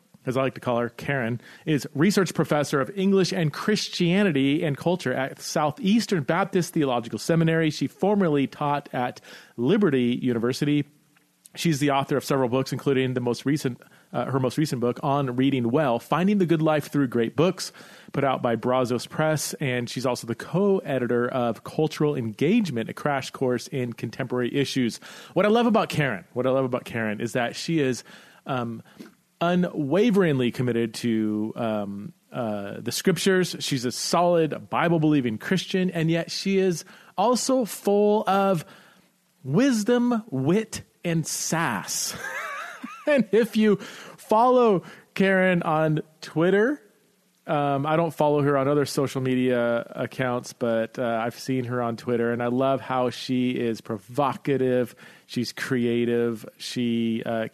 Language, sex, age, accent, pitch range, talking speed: English, male, 30-49, American, 125-180 Hz, 150 wpm